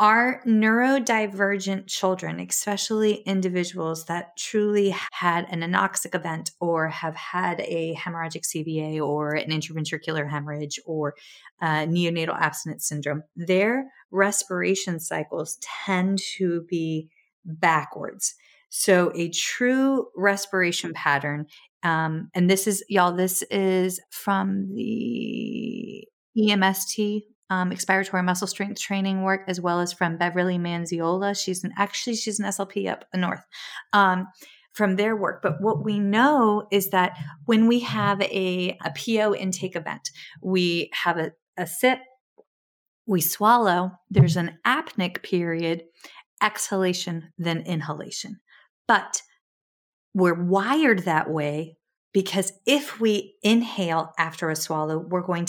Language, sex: English, female